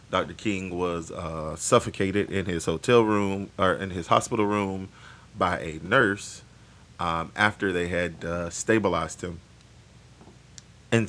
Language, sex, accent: English, male, American